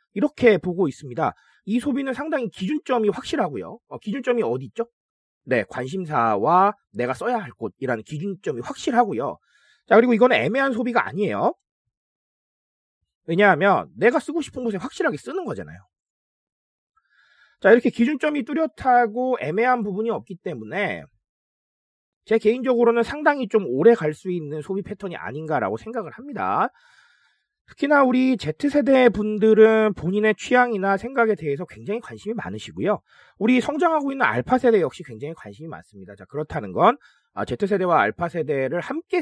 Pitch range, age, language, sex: 155-245 Hz, 30-49, Korean, male